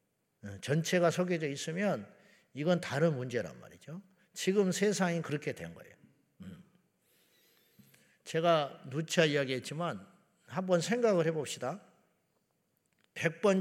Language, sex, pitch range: Korean, male, 140-185 Hz